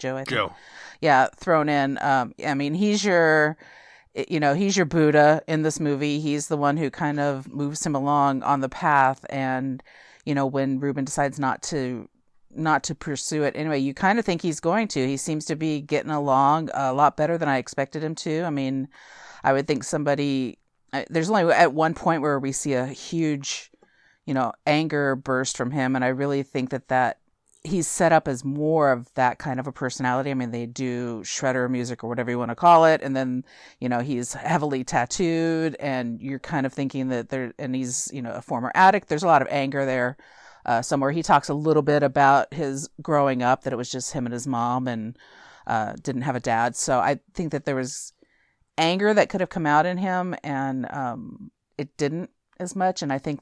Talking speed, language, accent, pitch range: 215 wpm, English, American, 130-155 Hz